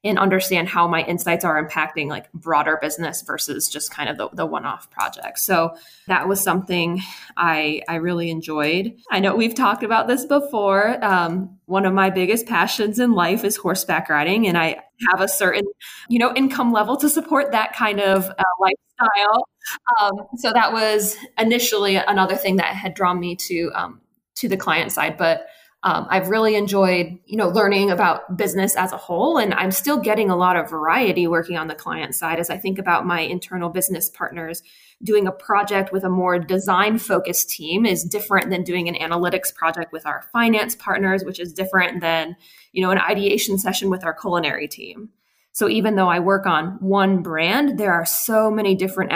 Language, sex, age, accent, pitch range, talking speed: English, female, 20-39, American, 170-210 Hz, 190 wpm